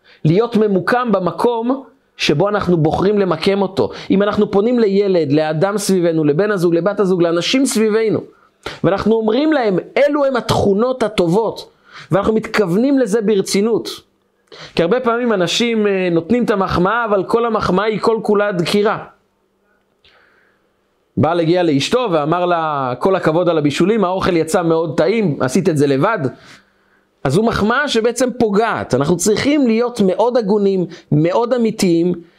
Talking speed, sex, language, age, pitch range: 135 wpm, male, Hebrew, 30-49, 165-225 Hz